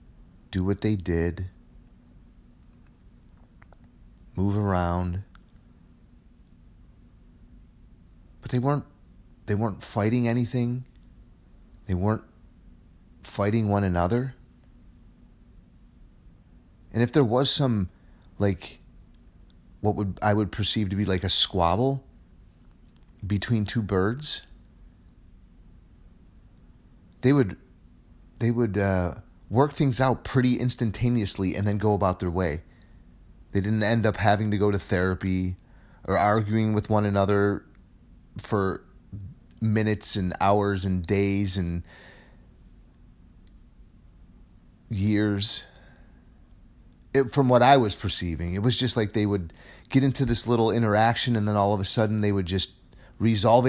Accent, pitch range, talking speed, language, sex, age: American, 90-115 Hz, 115 wpm, English, male, 40-59